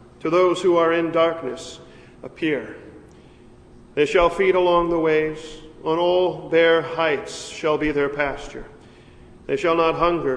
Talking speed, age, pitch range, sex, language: 145 wpm, 40-59, 150-175 Hz, male, English